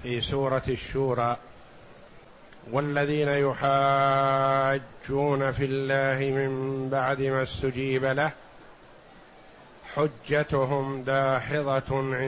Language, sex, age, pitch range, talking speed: Arabic, male, 50-69, 135-170 Hz, 70 wpm